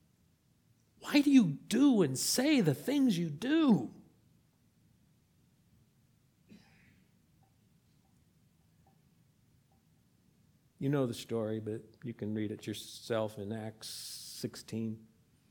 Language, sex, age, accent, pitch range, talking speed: English, male, 50-69, American, 115-175 Hz, 90 wpm